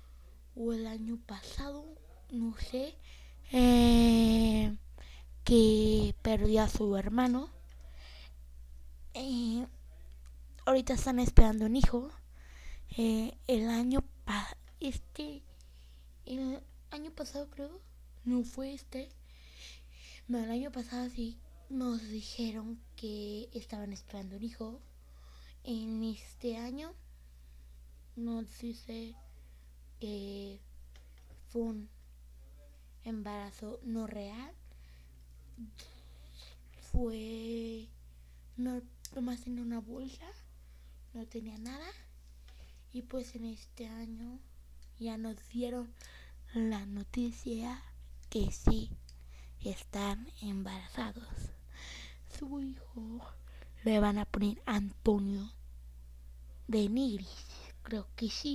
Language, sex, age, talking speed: English, female, 20-39, 90 wpm